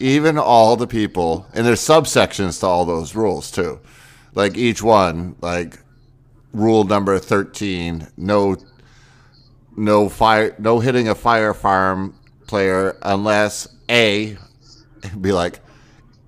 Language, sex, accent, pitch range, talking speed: English, male, American, 95-125 Hz, 120 wpm